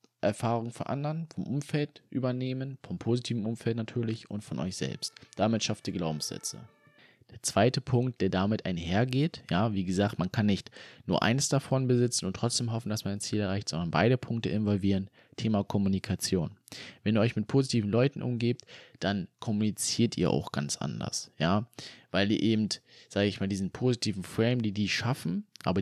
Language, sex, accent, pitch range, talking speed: German, male, German, 100-120 Hz, 175 wpm